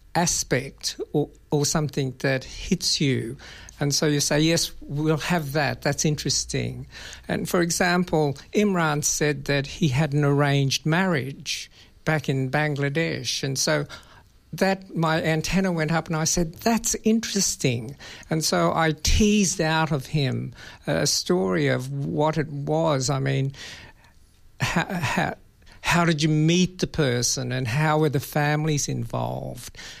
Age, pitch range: 60-79, 135-165 Hz